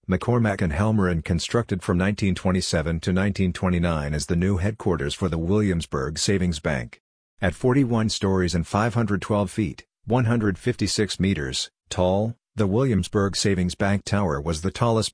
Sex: male